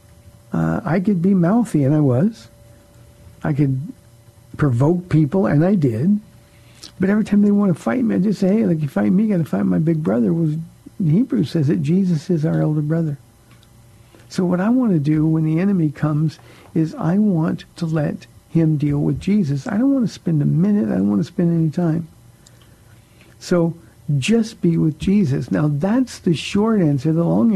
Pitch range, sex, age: 140-175 Hz, male, 60-79